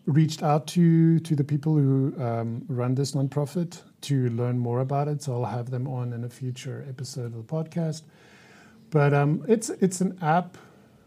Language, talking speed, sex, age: English, 185 wpm, male, 50-69